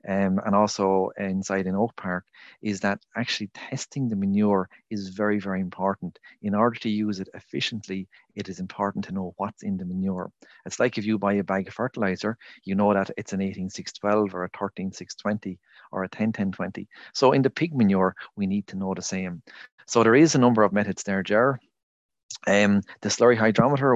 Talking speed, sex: 195 wpm, male